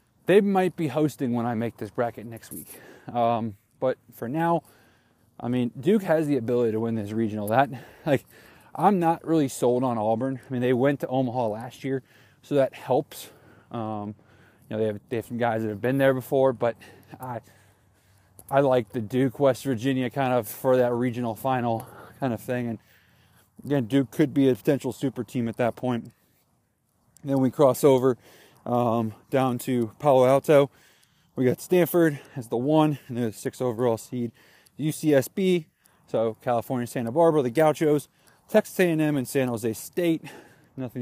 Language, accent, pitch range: English, American, 115-145 Hz